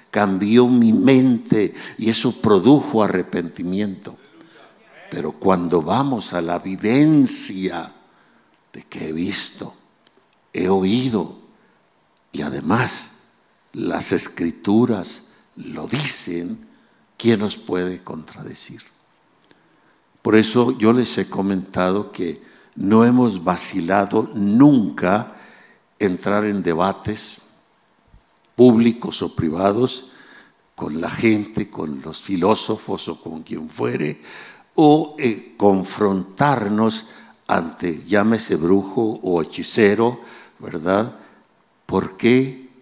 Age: 60-79